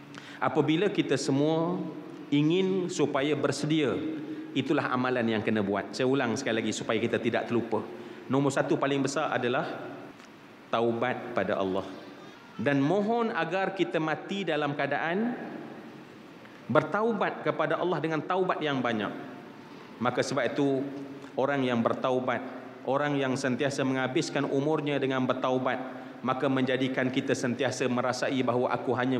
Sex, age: male, 30-49